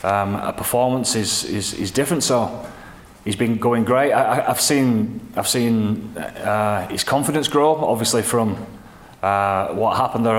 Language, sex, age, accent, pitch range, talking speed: English, male, 20-39, British, 100-115 Hz, 160 wpm